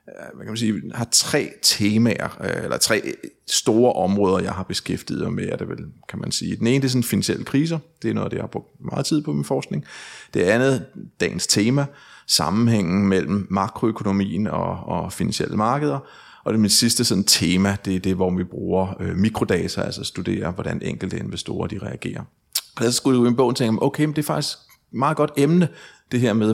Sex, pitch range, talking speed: male, 100-130 Hz, 195 wpm